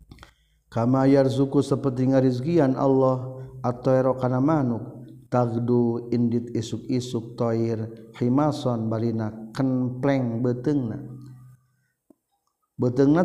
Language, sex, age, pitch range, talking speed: Indonesian, male, 50-69, 110-135 Hz, 75 wpm